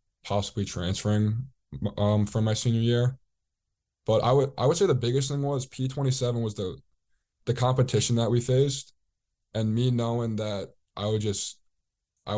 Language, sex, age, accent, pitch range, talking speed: English, male, 20-39, American, 100-115 Hz, 160 wpm